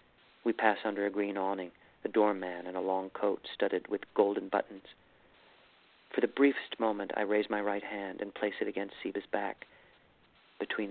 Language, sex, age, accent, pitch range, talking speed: English, male, 40-59, American, 100-125 Hz, 175 wpm